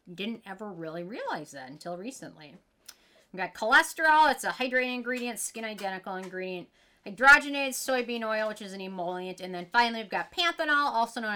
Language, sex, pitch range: English, female, 185-255 Hz